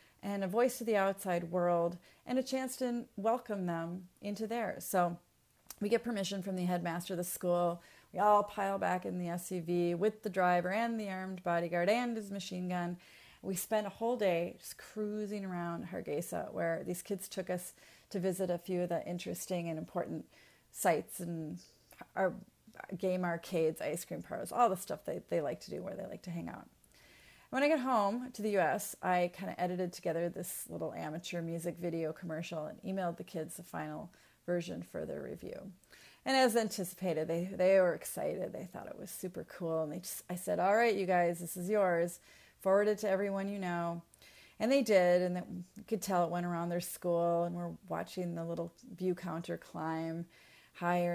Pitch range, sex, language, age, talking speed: 175-205 Hz, female, English, 30-49, 195 wpm